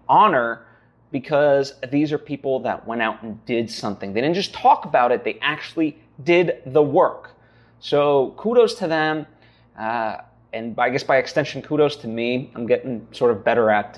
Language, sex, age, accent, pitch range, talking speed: English, male, 20-39, American, 115-150 Hz, 175 wpm